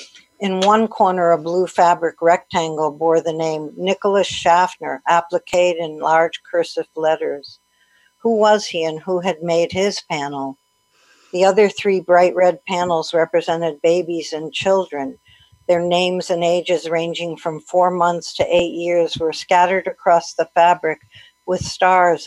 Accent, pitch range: American, 155-180 Hz